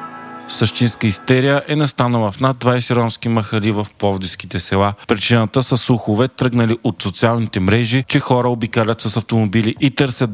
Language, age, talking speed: Bulgarian, 40-59, 150 wpm